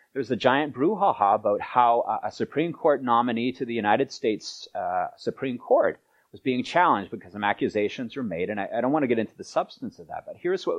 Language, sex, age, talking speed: English, male, 30-49, 230 wpm